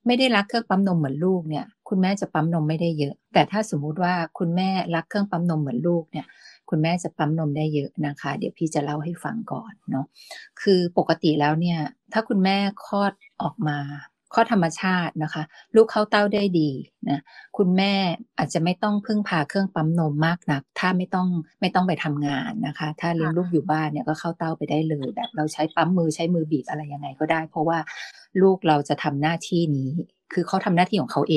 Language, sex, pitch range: Thai, female, 155-190 Hz